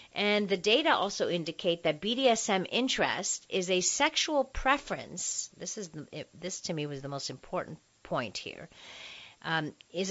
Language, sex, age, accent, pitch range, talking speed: English, female, 50-69, American, 150-200 Hz, 150 wpm